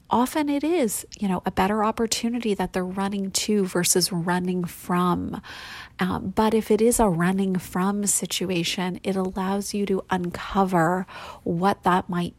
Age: 30-49